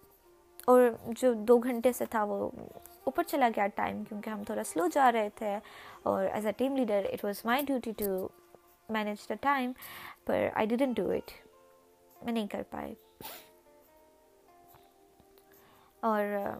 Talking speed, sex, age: 150 wpm, female, 20-39